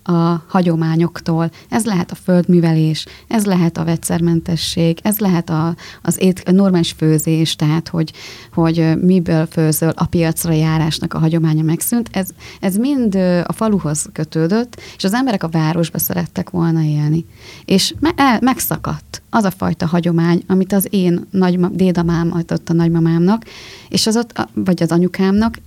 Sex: female